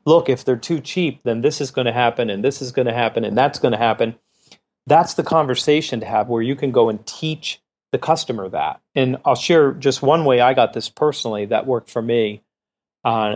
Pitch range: 115-145 Hz